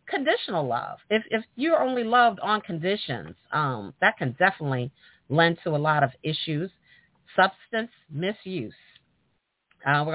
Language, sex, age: English, female, 50-69